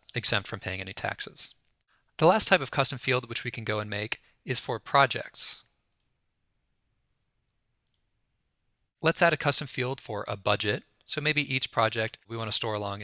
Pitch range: 110-130 Hz